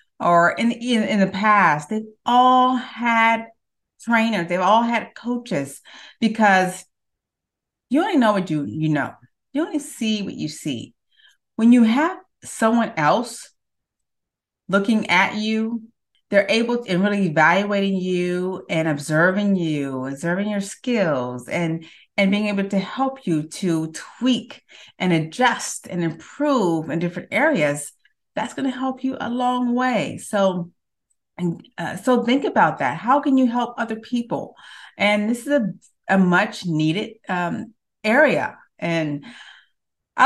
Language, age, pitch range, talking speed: English, 30-49, 170-235 Hz, 145 wpm